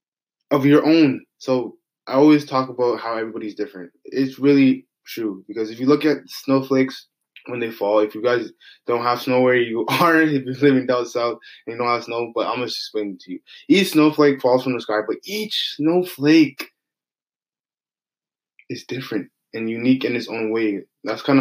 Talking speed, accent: 190 wpm, American